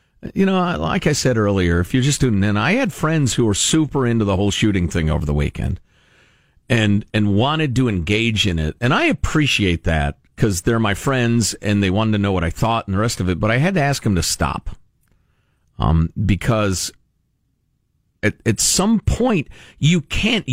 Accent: American